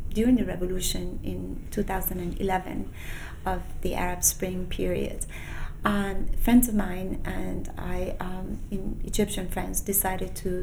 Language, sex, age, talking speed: English, female, 30-49, 125 wpm